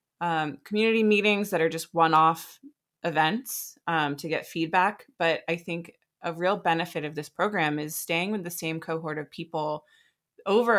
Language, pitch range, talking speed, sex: English, 160-200 Hz, 165 wpm, female